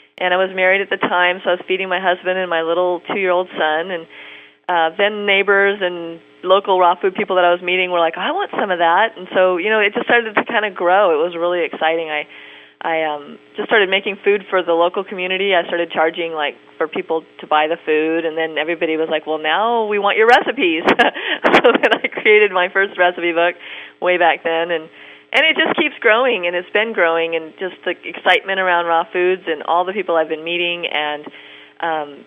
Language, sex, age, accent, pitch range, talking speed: English, female, 30-49, American, 165-195 Hz, 225 wpm